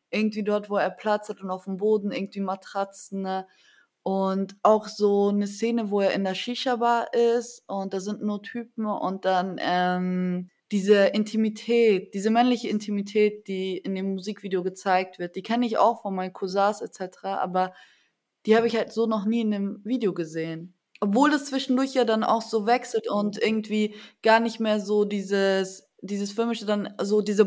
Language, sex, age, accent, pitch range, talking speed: German, female, 20-39, German, 195-225 Hz, 185 wpm